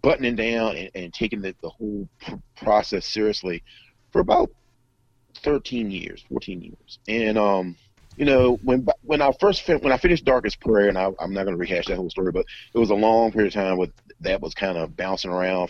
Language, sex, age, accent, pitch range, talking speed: English, male, 30-49, American, 95-120 Hz, 215 wpm